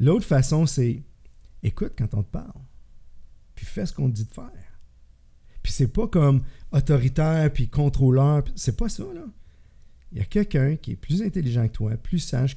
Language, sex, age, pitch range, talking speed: French, male, 50-69, 100-135 Hz, 190 wpm